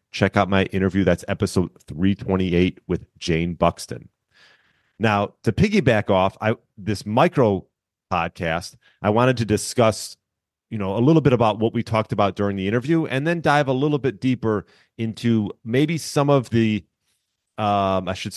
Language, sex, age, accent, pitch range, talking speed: English, male, 30-49, American, 90-120 Hz, 165 wpm